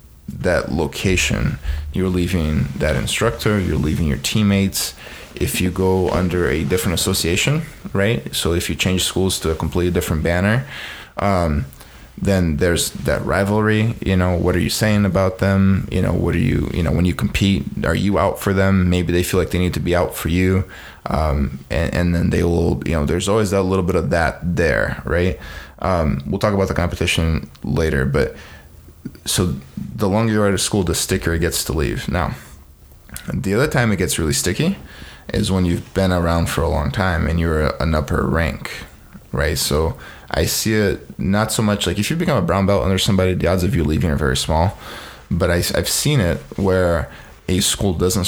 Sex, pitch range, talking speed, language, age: male, 75-95 Hz, 200 wpm, English, 20-39